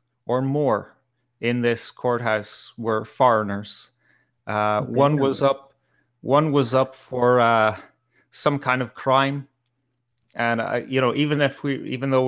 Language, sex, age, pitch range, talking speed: English, male, 30-49, 110-130 Hz, 140 wpm